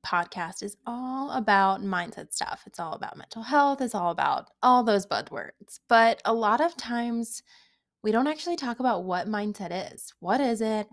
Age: 20-39